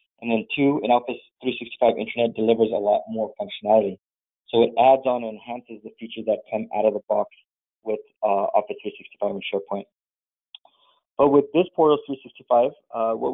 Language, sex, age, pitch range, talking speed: English, male, 20-39, 110-130 Hz, 175 wpm